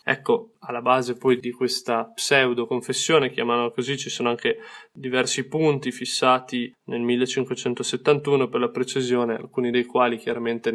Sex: male